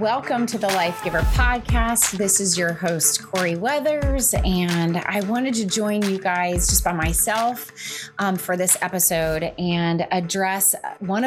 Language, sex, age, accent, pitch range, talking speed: English, female, 20-39, American, 175-210 Hz, 150 wpm